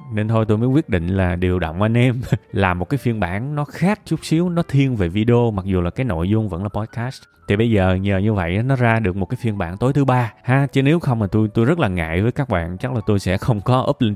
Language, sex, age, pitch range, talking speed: Vietnamese, male, 20-39, 95-125 Hz, 295 wpm